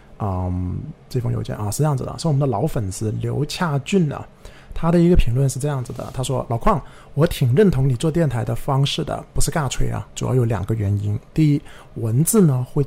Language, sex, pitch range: Chinese, male, 115-150 Hz